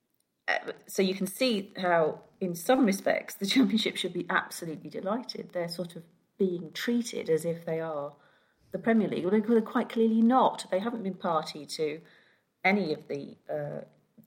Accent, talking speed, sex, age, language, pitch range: British, 170 wpm, female, 40-59, English, 160-210 Hz